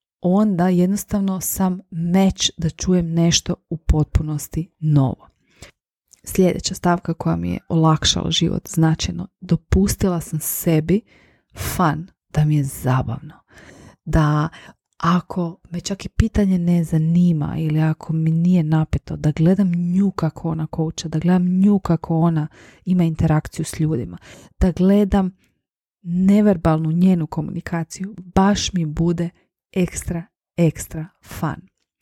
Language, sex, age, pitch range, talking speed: Croatian, female, 30-49, 155-185 Hz, 120 wpm